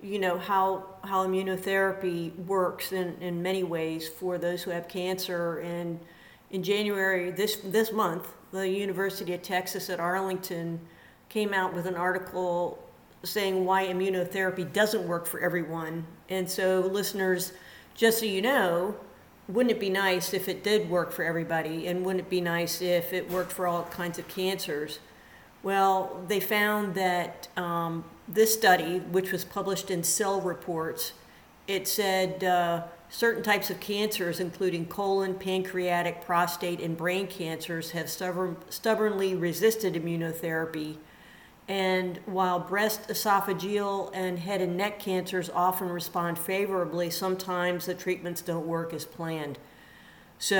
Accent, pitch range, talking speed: American, 175-195 Hz, 140 wpm